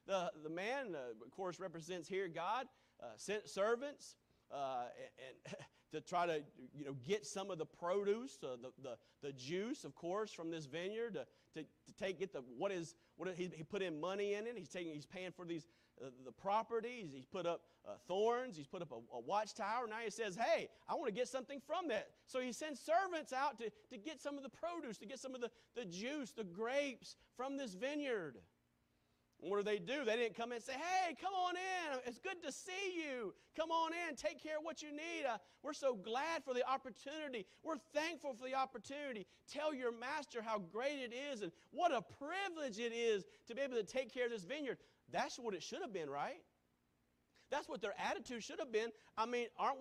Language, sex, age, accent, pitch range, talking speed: English, male, 40-59, American, 180-270 Hz, 225 wpm